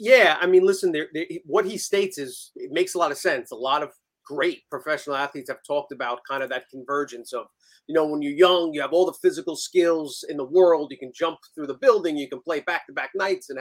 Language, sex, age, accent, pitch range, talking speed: English, male, 30-49, American, 145-200 Hz, 255 wpm